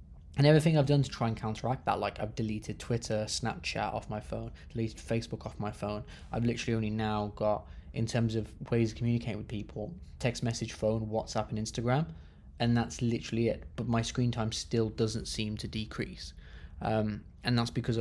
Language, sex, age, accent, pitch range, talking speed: English, male, 20-39, British, 100-115 Hz, 195 wpm